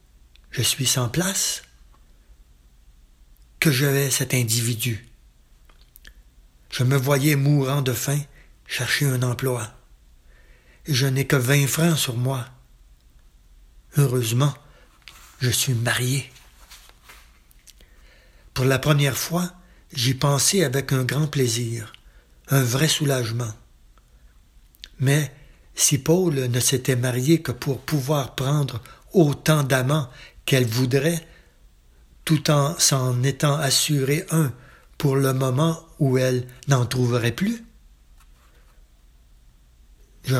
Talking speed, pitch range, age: 105 wpm, 85-145 Hz, 60-79